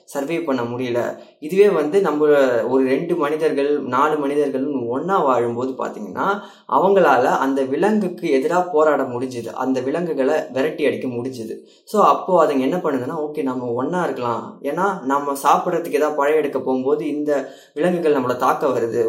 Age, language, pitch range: 20-39, Tamil, 130-155 Hz